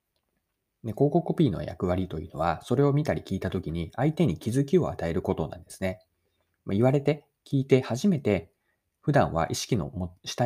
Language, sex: Japanese, male